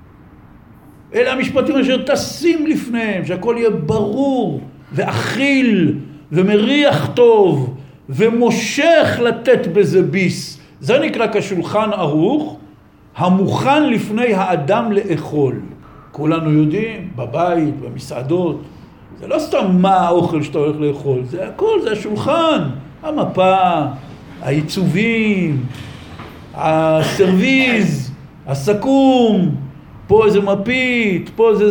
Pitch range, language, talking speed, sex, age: 155-240 Hz, Hebrew, 90 wpm, male, 60-79